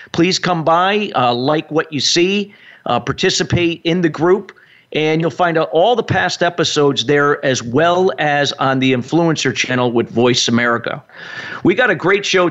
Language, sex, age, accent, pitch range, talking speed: English, male, 50-69, American, 125-170 Hz, 180 wpm